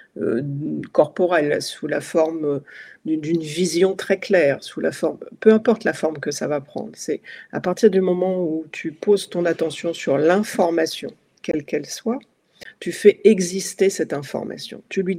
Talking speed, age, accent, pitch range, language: 150 wpm, 50-69, French, 160-195 Hz, French